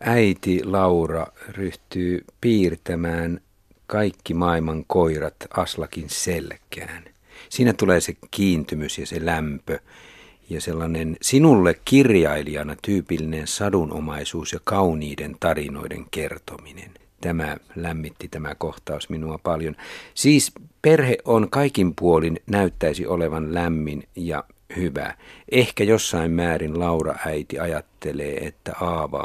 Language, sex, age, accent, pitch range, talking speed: Finnish, male, 50-69, native, 80-95 Hz, 105 wpm